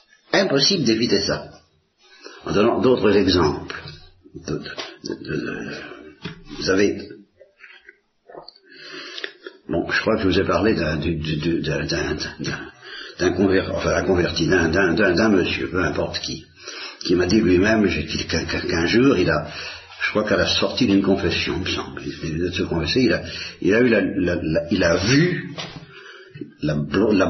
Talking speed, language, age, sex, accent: 120 wpm, Italian, 50-69, male, French